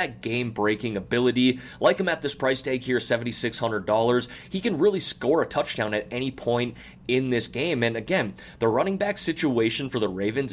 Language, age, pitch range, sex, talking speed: English, 20-39, 115-140 Hz, male, 175 wpm